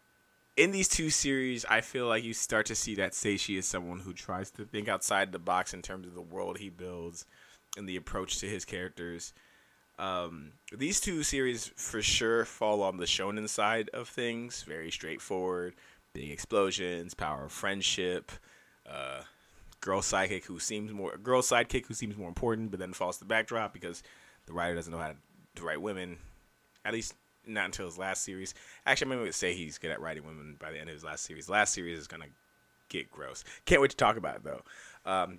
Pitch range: 90-115 Hz